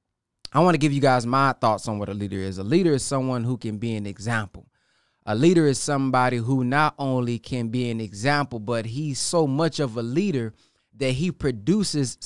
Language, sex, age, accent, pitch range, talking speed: English, male, 20-39, American, 125-195 Hz, 210 wpm